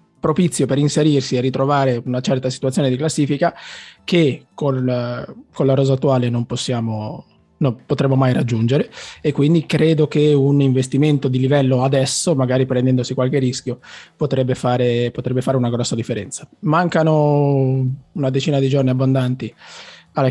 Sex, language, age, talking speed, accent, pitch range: male, Italian, 20-39, 140 wpm, native, 125-150 Hz